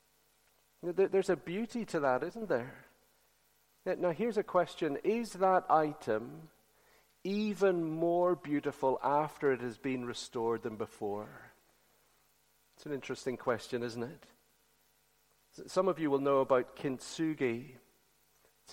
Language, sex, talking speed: English, male, 120 wpm